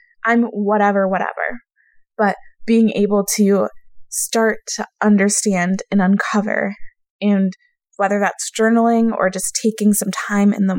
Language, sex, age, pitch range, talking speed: English, female, 20-39, 200-245 Hz, 130 wpm